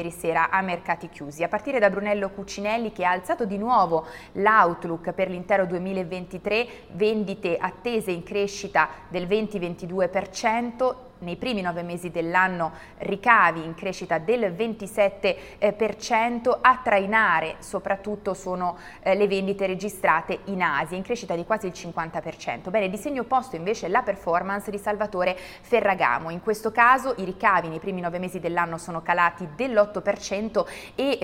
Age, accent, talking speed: 30-49, native, 140 wpm